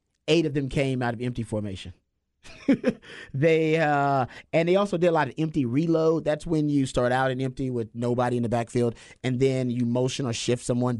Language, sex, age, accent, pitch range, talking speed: English, male, 30-49, American, 120-150 Hz, 205 wpm